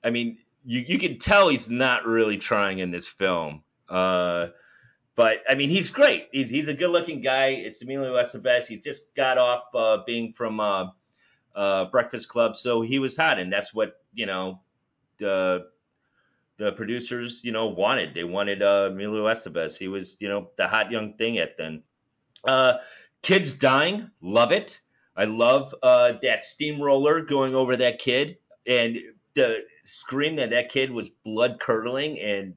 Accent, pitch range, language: American, 110-170 Hz, English